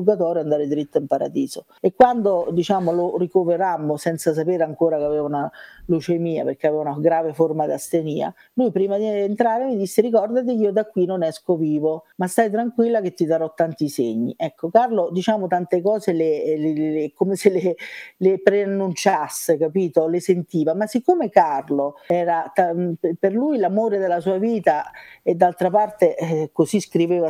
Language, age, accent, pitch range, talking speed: English, 50-69, Italian, 165-205 Hz, 170 wpm